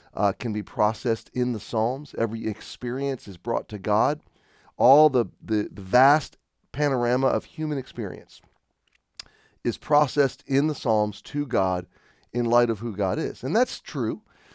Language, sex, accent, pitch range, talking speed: English, male, American, 110-145 Hz, 155 wpm